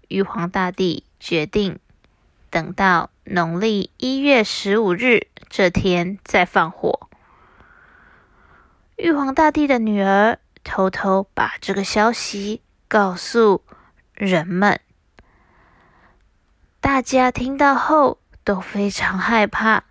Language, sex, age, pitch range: Chinese, female, 20-39, 175-225 Hz